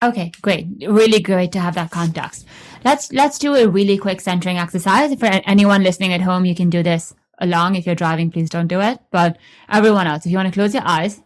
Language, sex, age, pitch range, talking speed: English, female, 20-39, 175-205 Hz, 230 wpm